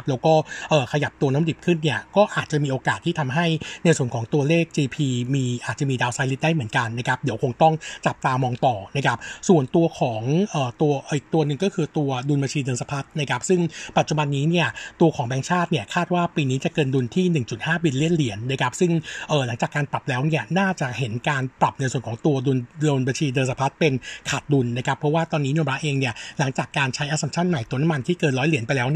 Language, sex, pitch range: Thai, male, 130-165 Hz